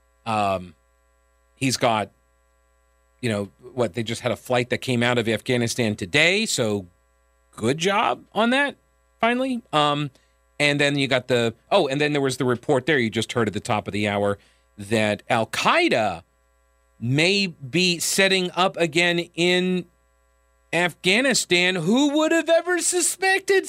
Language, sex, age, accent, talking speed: English, male, 40-59, American, 150 wpm